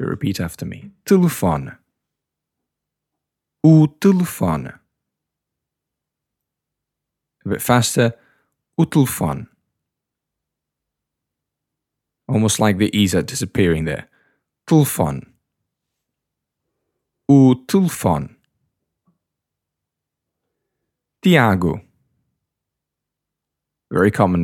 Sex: male